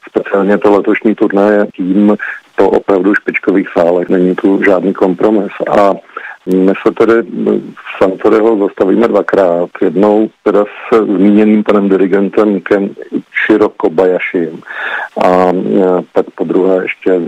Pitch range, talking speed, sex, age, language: 95-105 Hz, 125 wpm, male, 50-69, Czech